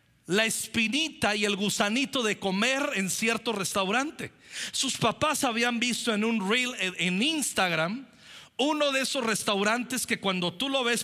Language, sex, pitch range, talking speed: Spanish, male, 190-245 Hz, 150 wpm